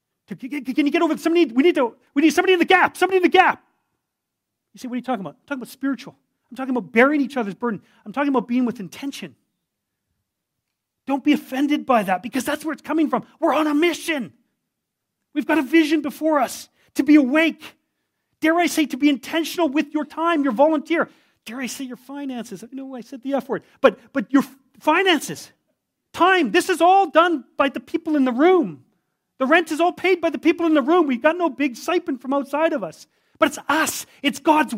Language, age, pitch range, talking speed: English, 40-59, 265-335 Hz, 225 wpm